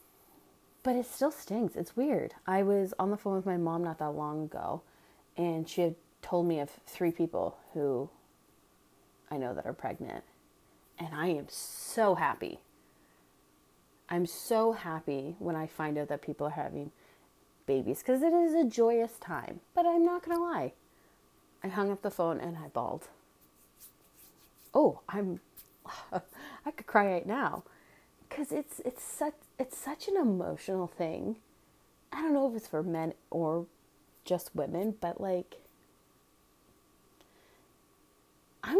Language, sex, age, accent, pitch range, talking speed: English, female, 30-49, American, 175-290 Hz, 150 wpm